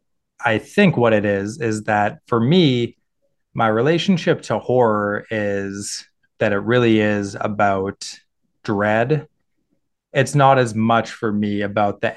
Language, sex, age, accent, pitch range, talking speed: English, male, 20-39, American, 100-115 Hz, 140 wpm